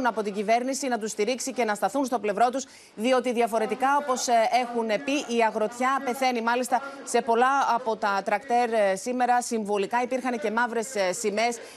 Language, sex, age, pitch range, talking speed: Greek, female, 30-49, 220-270 Hz, 165 wpm